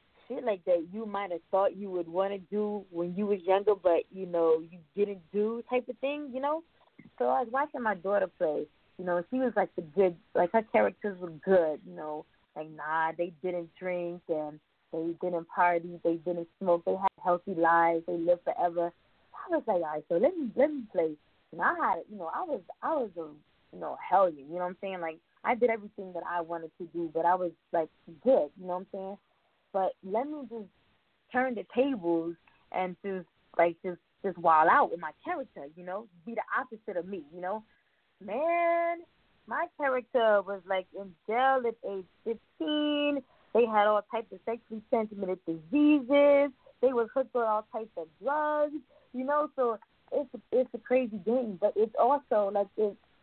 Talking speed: 205 wpm